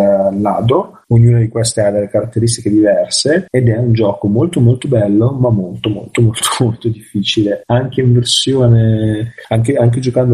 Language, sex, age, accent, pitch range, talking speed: Italian, male, 30-49, native, 105-120 Hz, 155 wpm